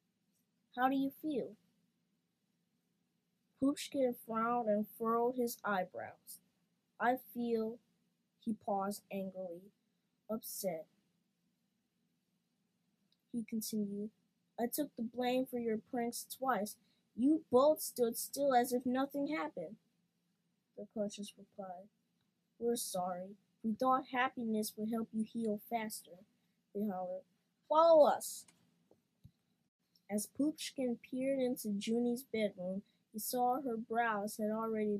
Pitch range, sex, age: 200-235 Hz, female, 20-39